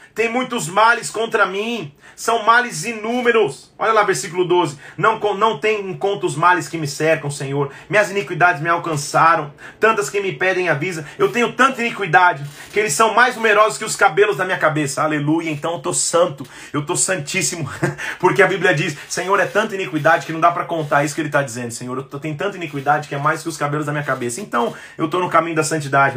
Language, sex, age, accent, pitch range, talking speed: Portuguese, male, 30-49, Brazilian, 150-205 Hz, 215 wpm